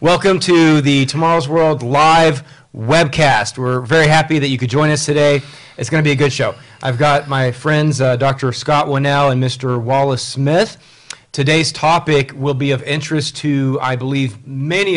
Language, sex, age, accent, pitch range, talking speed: English, male, 40-59, American, 130-150 Hz, 180 wpm